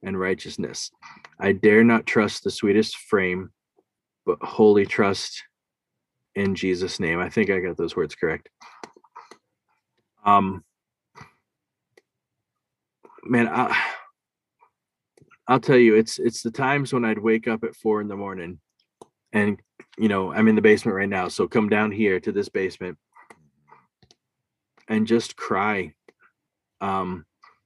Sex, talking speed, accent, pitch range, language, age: male, 130 wpm, American, 100-120 Hz, English, 20-39